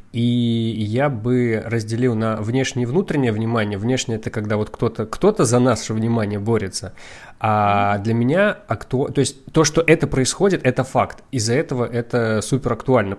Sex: male